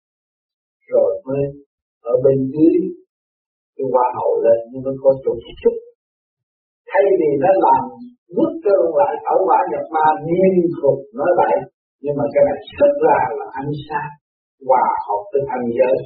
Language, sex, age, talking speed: Vietnamese, male, 50-69, 165 wpm